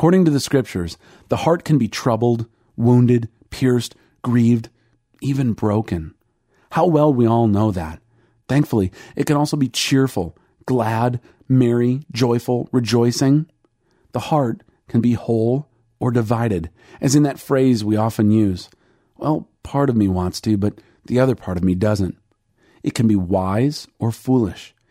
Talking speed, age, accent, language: 150 wpm, 40-59, American, English